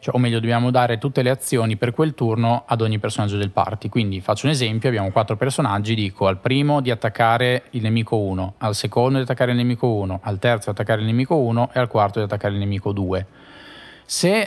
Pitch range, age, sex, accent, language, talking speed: 105-125 Hz, 20-39, male, native, Italian, 225 wpm